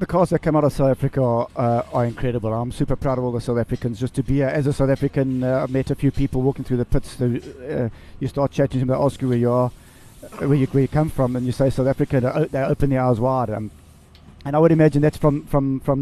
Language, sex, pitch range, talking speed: English, male, 125-145 Hz, 290 wpm